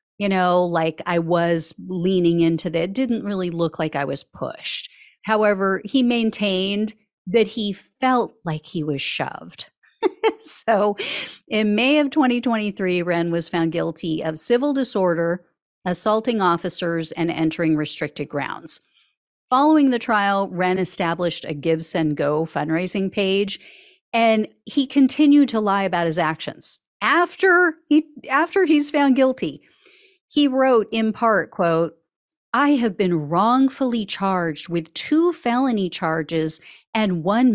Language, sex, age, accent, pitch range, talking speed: English, female, 50-69, American, 175-255 Hz, 135 wpm